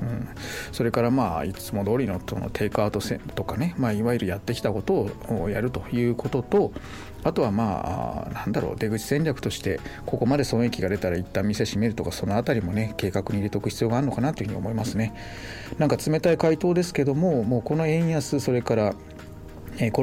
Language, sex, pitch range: Japanese, male, 100-125 Hz